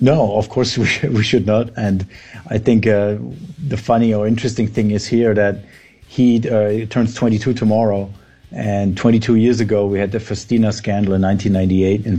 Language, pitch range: English, 100-115 Hz